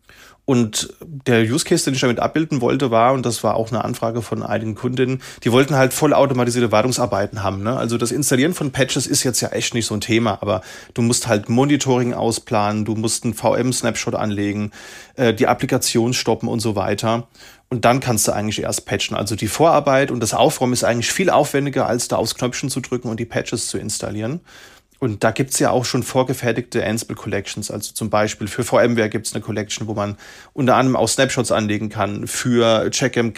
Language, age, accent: German, 30-49, German